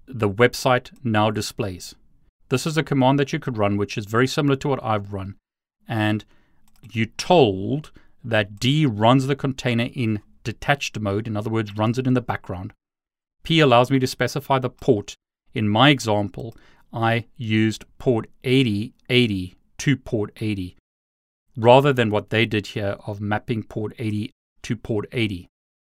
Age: 30-49